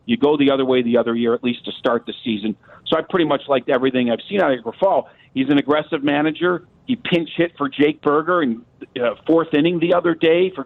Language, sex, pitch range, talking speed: English, male, 125-155 Hz, 240 wpm